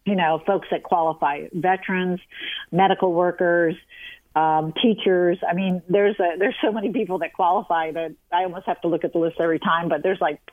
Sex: female